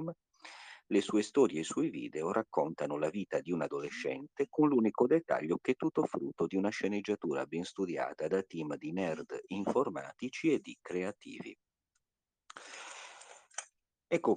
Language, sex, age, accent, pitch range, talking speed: Italian, male, 50-69, native, 80-125 Hz, 140 wpm